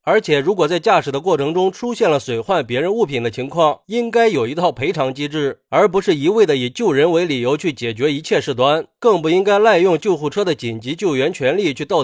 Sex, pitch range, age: male, 140-205 Hz, 30-49